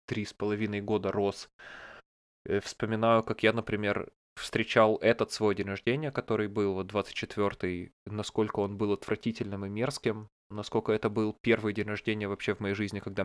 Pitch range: 100-110 Hz